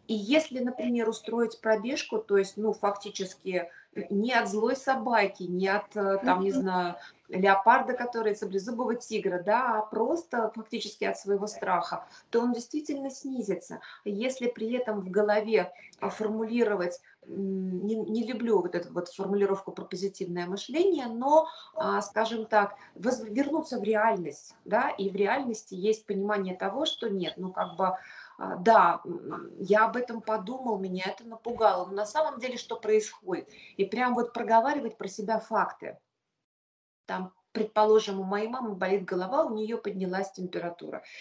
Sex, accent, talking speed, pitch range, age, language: female, native, 145 wpm, 190-235 Hz, 30-49, Russian